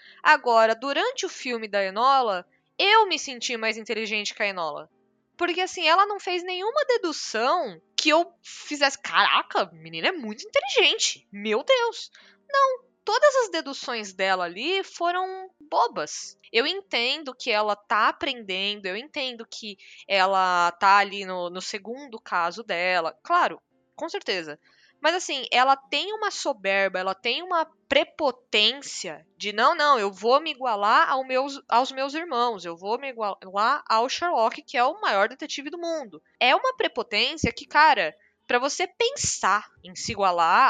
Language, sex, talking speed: Portuguese, female, 150 wpm